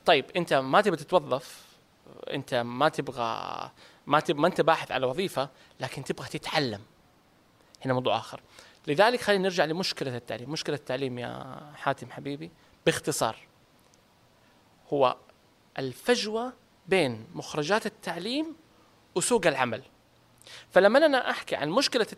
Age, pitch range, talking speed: 20-39, 145-235 Hz, 120 wpm